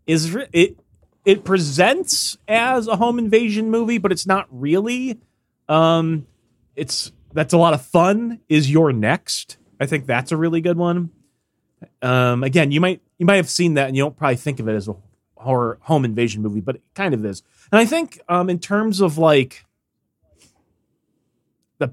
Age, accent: 30-49, American